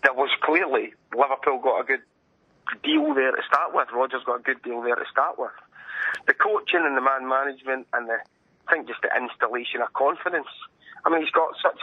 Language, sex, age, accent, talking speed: English, male, 30-49, British, 210 wpm